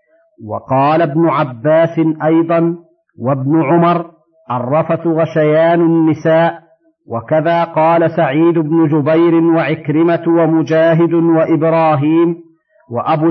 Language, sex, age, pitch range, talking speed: Arabic, male, 50-69, 155-170 Hz, 80 wpm